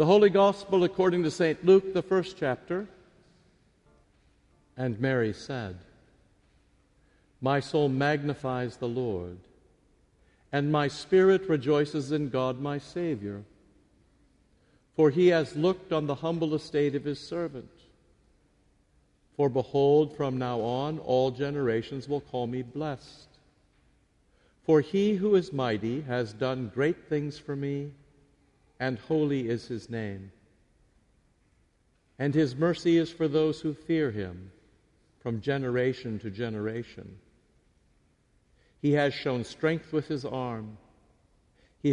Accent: American